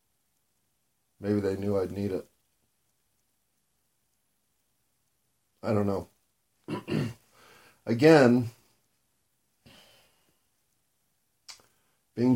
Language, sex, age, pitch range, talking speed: English, male, 40-59, 100-120 Hz, 55 wpm